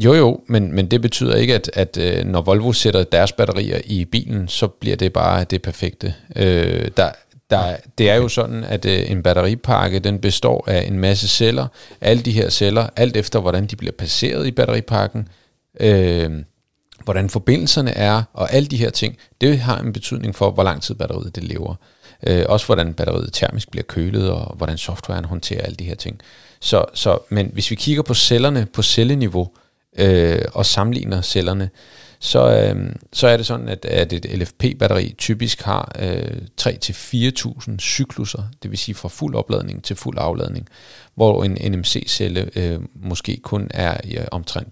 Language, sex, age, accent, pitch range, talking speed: Danish, male, 40-59, native, 95-120 Hz, 180 wpm